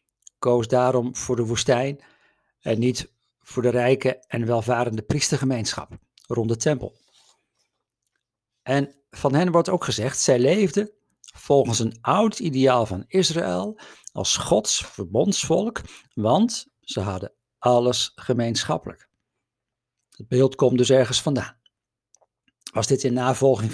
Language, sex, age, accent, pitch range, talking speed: Dutch, male, 50-69, Dutch, 120-145 Hz, 120 wpm